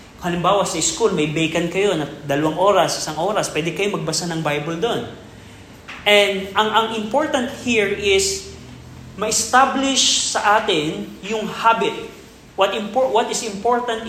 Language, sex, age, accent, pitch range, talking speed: Filipino, male, 30-49, native, 150-205 Hz, 140 wpm